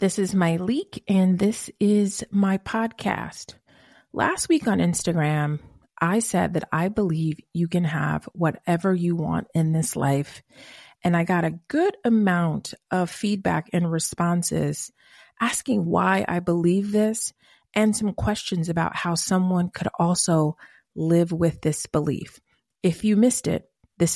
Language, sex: English, female